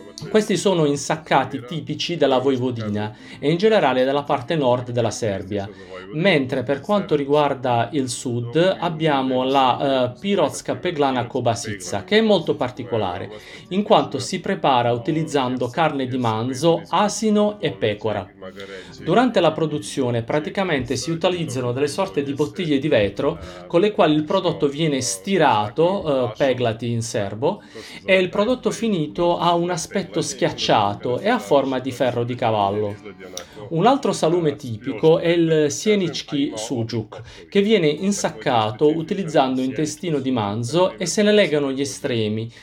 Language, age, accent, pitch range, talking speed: Italian, 40-59, native, 120-175 Hz, 140 wpm